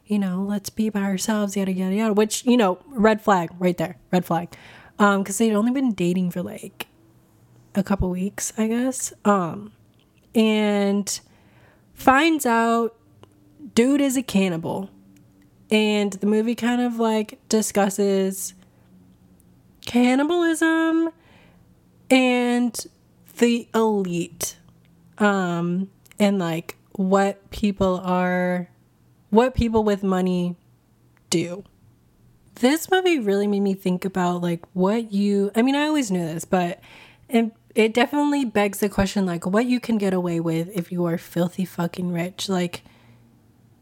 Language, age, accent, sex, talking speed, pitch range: English, 20-39, American, female, 135 wpm, 180-230 Hz